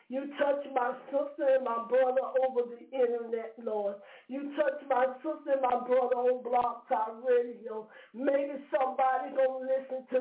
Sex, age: female, 50-69